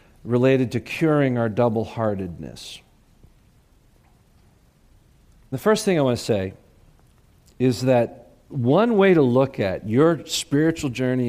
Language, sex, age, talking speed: English, male, 50-69, 115 wpm